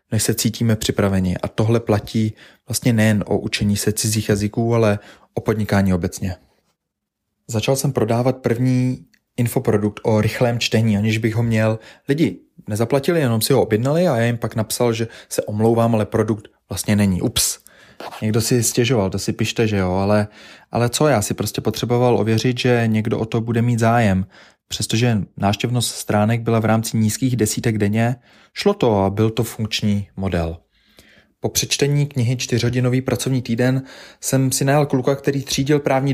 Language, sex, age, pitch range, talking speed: Czech, male, 20-39, 105-125 Hz, 170 wpm